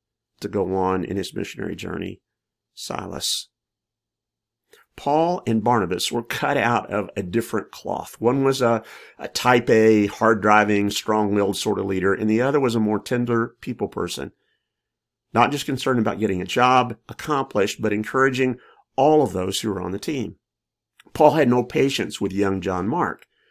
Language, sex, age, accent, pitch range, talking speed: English, male, 50-69, American, 105-130 Hz, 165 wpm